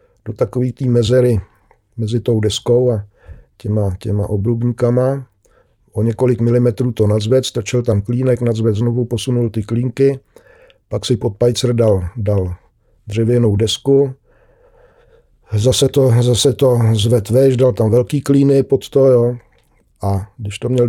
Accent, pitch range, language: native, 110-130 Hz, Czech